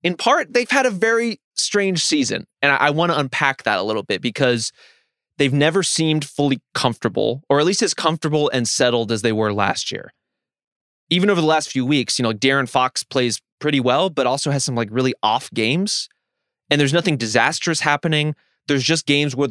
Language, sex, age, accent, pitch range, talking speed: English, male, 20-39, American, 120-155 Hz, 200 wpm